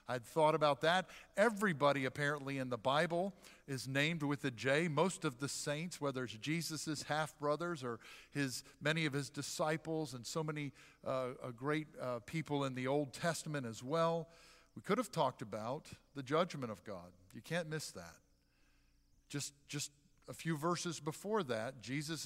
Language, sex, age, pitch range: English, male, 50-69, 130-160 Hz